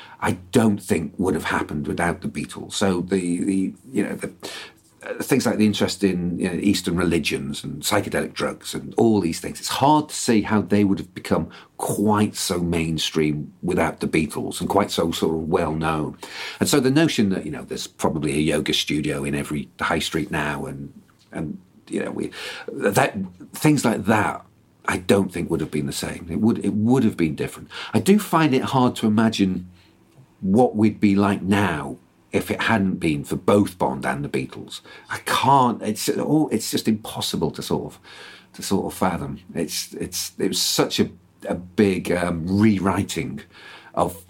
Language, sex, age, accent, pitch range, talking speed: English, male, 50-69, British, 85-110 Hz, 195 wpm